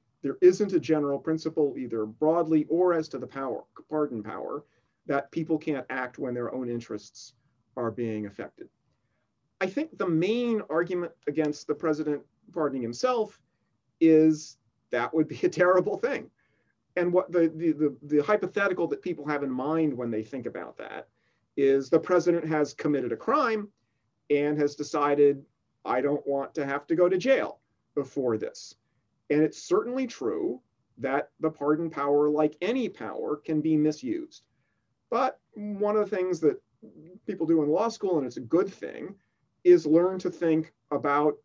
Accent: American